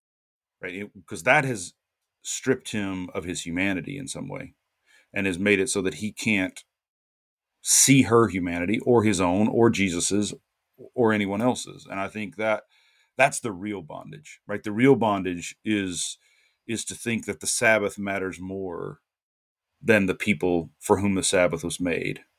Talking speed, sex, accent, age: 165 wpm, male, American, 40-59